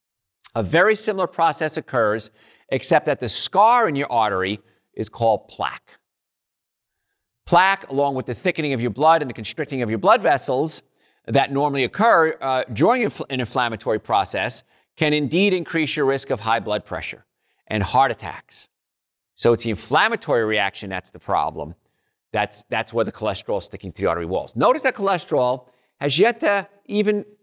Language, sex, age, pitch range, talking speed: English, male, 40-59, 130-190 Hz, 165 wpm